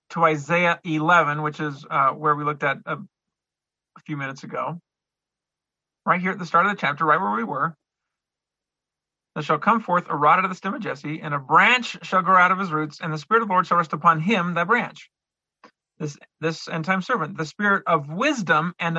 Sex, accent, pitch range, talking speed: male, American, 160-200 Hz, 220 wpm